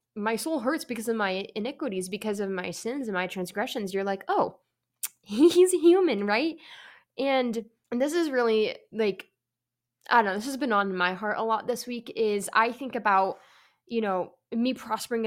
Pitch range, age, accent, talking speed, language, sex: 180-225 Hz, 10-29, American, 180 wpm, English, female